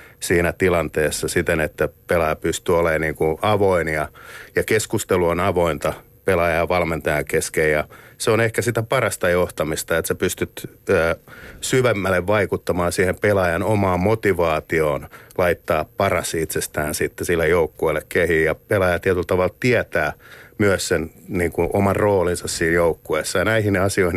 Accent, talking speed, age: native, 145 wpm, 50-69